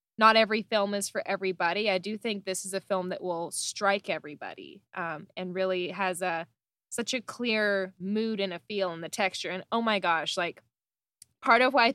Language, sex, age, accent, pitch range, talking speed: English, female, 10-29, American, 185-225 Hz, 205 wpm